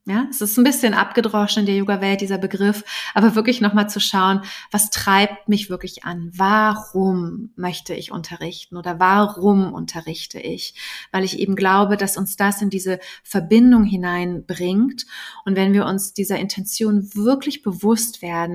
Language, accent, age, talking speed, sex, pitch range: German, German, 30-49, 160 wpm, female, 180-220 Hz